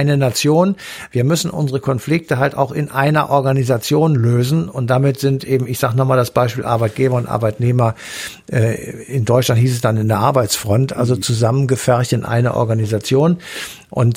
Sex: male